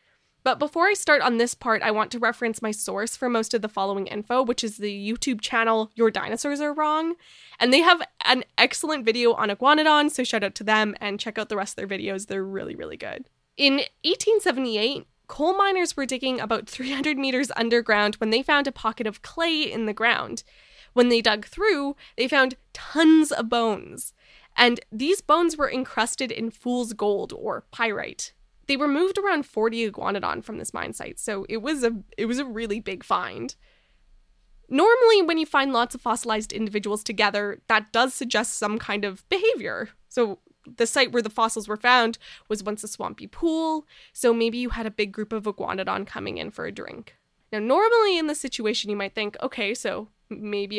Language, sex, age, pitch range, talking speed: English, female, 10-29, 215-280 Hz, 195 wpm